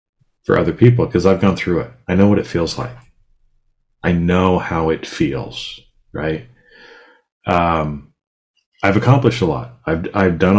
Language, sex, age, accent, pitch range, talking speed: English, male, 40-59, American, 80-95 Hz, 160 wpm